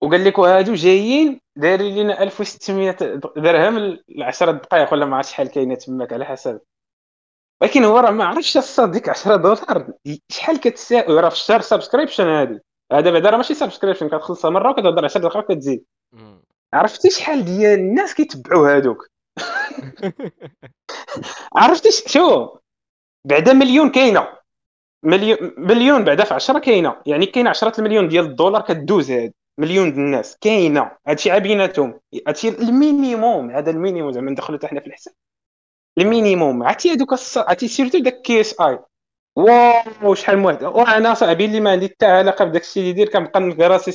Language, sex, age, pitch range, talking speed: Arabic, male, 20-39, 155-225 Hz, 135 wpm